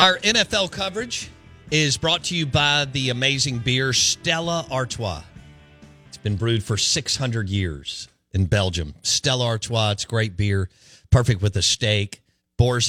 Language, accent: English, American